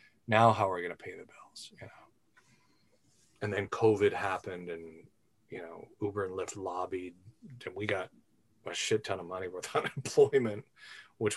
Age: 30-49